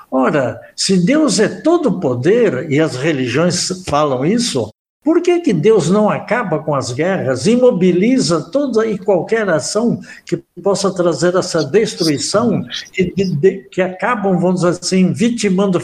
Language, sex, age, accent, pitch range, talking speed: Portuguese, male, 60-79, Brazilian, 155-220 Hz, 150 wpm